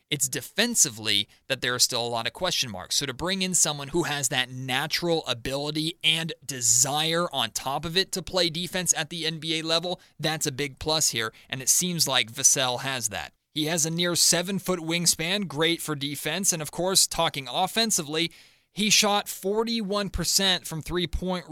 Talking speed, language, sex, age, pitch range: 180 wpm, English, male, 30-49, 135-175 Hz